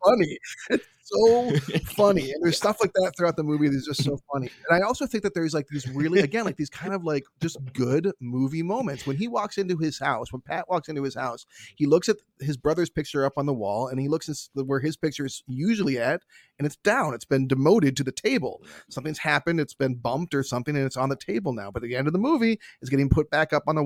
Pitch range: 130-160 Hz